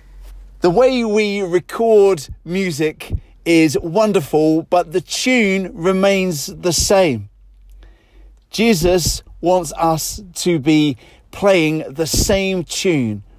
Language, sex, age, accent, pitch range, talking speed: English, male, 40-59, British, 130-185 Hz, 100 wpm